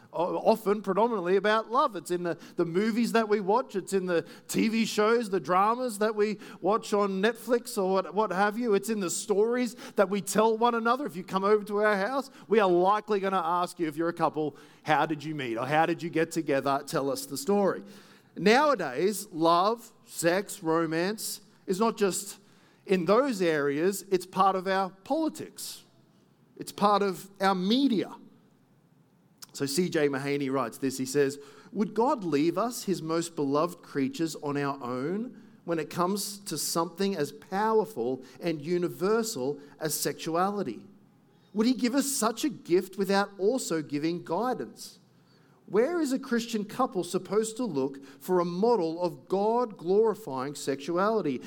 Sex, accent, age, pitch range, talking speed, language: male, Australian, 50-69, 165-220 Hz, 170 wpm, English